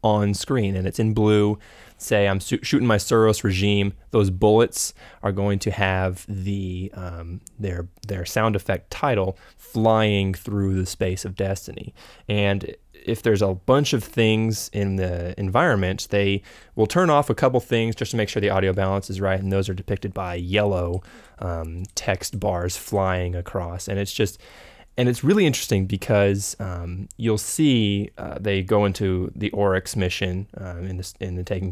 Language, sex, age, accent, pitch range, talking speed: English, male, 20-39, American, 95-110 Hz, 175 wpm